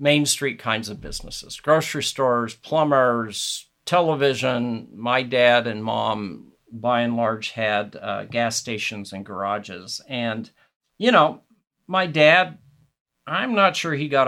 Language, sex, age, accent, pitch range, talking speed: English, male, 50-69, American, 115-155 Hz, 135 wpm